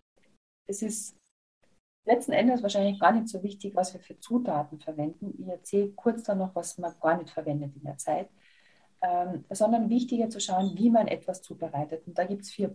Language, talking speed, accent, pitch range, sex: German, 195 wpm, German, 165-205 Hz, female